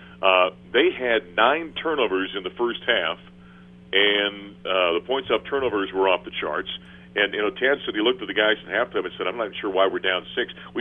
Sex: male